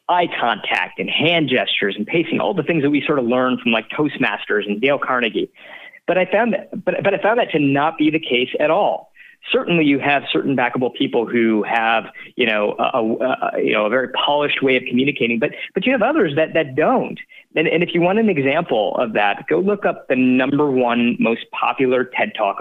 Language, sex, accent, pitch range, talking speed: English, male, American, 130-170 Hz, 225 wpm